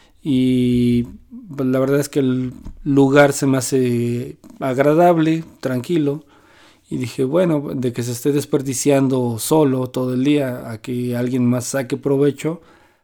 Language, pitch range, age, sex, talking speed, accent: Spanish, 120-140 Hz, 40-59, male, 140 wpm, Mexican